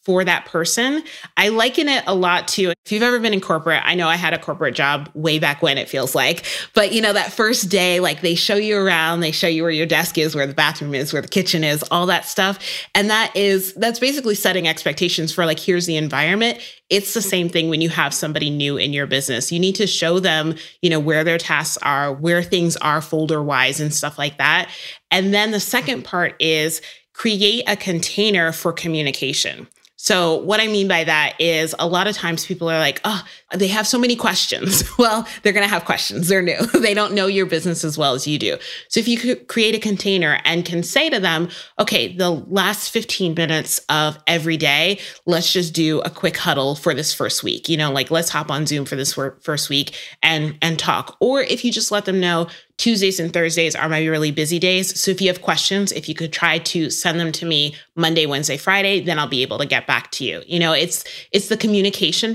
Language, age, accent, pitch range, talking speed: English, 30-49, American, 160-200 Hz, 230 wpm